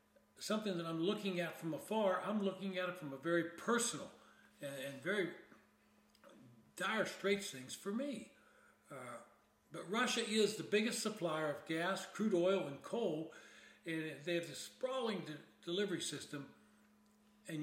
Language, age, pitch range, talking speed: English, 60-79, 160-205 Hz, 150 wpm